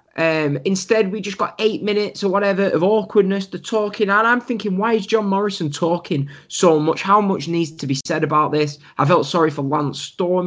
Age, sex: 10-29, male